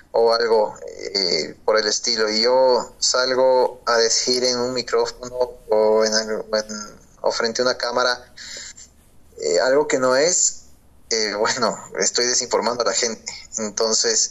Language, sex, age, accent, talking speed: Spanish, male, 20-39, Mexican, 140 wpm